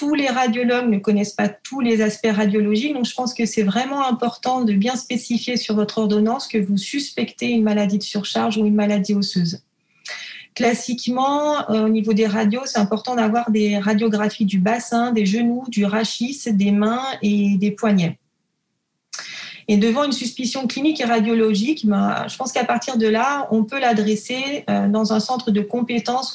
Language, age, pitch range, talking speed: French, 30-49, 210-240 Hz, 180 wpm